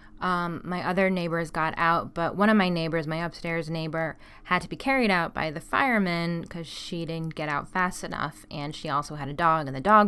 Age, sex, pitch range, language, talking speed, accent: 10-29, female, 145-175 Hz, English, 225 wpm, American